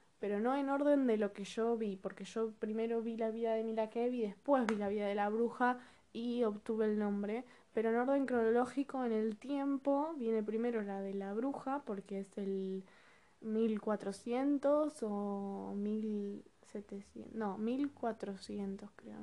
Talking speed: 155 wpm